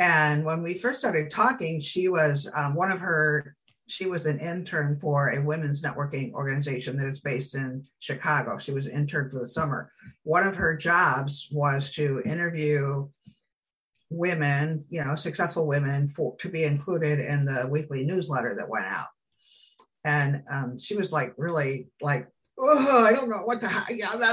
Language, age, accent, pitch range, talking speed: English, 50-69, American, 145-190 Hz, 170 wpm